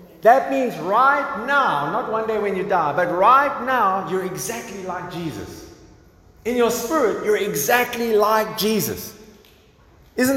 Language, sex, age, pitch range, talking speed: English, male, 30-49, 155-205 Hz, 145 wpm